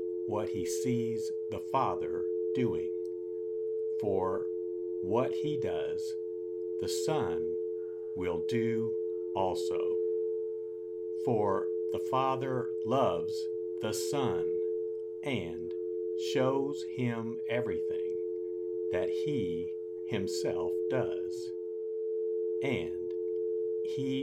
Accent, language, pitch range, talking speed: American, English, 90-110 Hz, 75 wpm